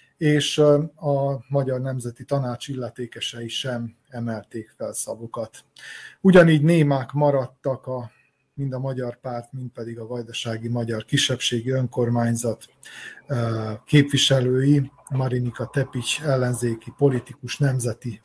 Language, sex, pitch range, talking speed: Hungarian, male, 115-140 Hz, 100 wpm